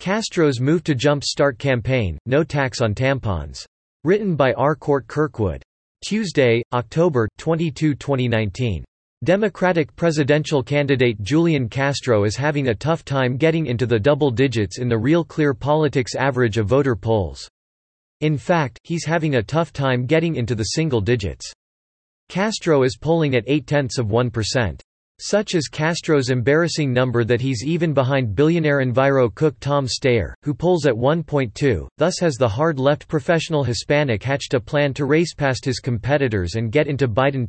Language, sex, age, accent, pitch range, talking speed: English, male, 40-59, American, 120-150 Hz, 155 wpm